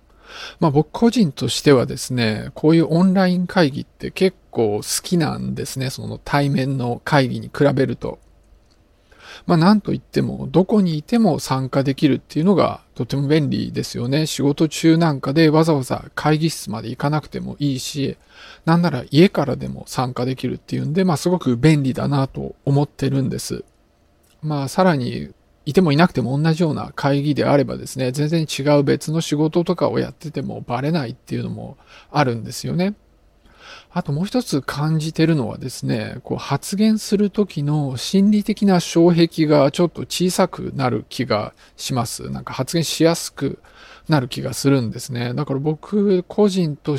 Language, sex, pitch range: Japanese, male, 130-170 Hz